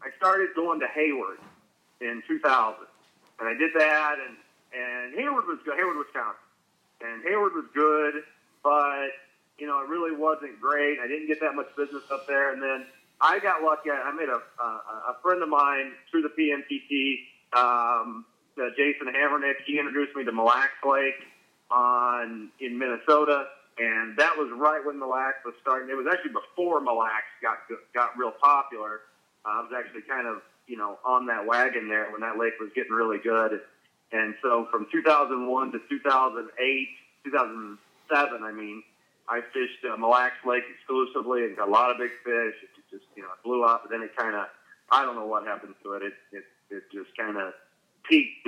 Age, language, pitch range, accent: 40-59, English, 115-145 Hz, American